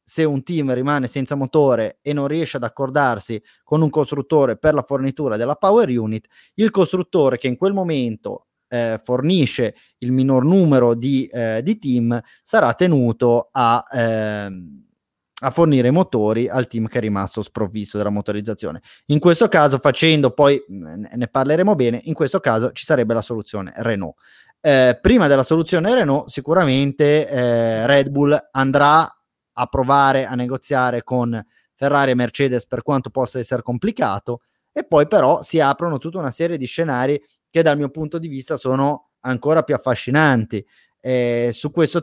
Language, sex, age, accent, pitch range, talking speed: Italian, male, 30-49, native, 125-155 Hz, 165 wpm